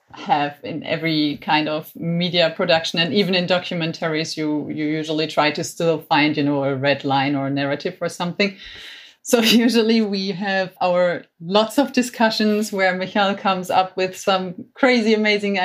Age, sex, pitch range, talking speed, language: 30-49, female, 170-215 Hz, 170 wpm, German